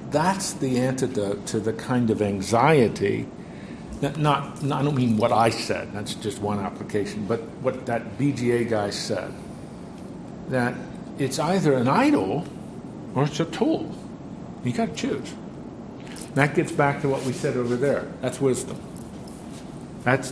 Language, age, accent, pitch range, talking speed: English, 60-79, American, 120-170 Hz, 155 wpm